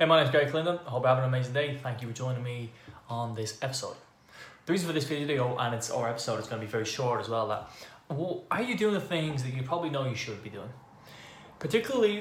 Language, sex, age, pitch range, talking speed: English, male, 10-29, 110-140 Hz, 260 wpm